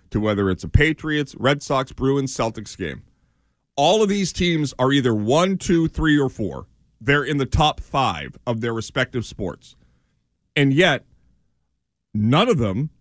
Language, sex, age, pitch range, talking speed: English, male, 40-59, 110-160 Hz, 155 wpm